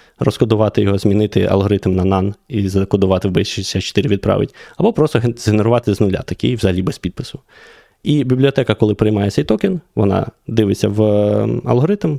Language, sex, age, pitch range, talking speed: Ukrainian, male, 20-39, 95-120 Hz, 150 wpm